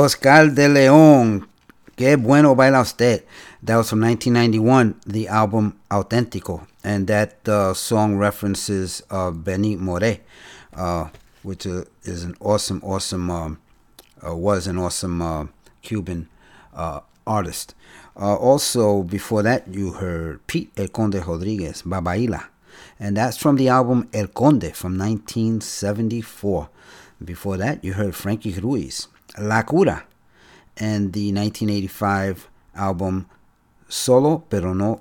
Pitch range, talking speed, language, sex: 95-120 Hz, 125 wpm, Spanish, male